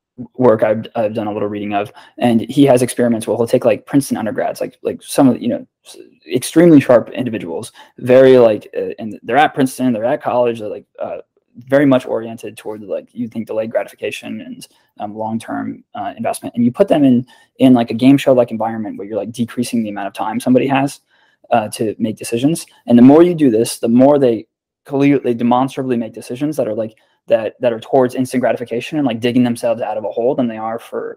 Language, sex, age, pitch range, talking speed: English, male, 20-39, 115-160 Hz, 225 wpm